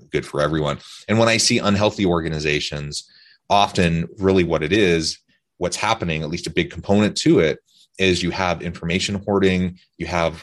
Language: English